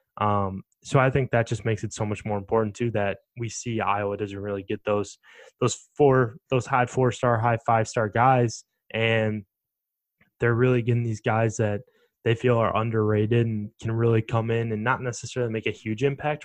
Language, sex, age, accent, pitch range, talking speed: English, male, 10-29, American, 105-120 Hz, 205 wpm